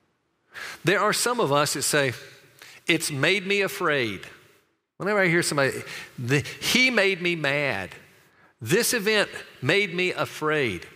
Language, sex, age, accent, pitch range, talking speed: English, male, 50-69, American, 120-180 Hz, 135 wpm